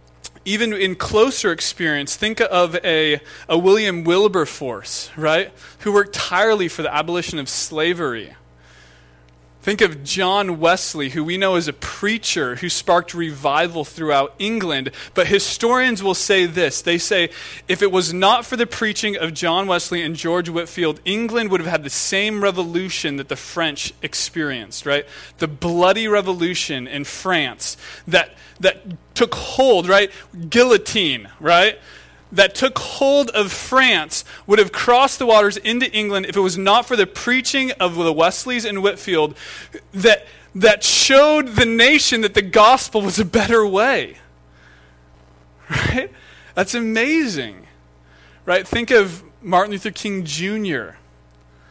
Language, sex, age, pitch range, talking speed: English, male, 20-39, 145-210 Hz, 145 wpm